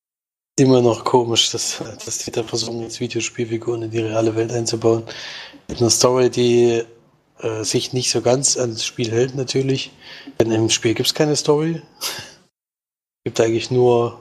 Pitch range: 115-125 Hz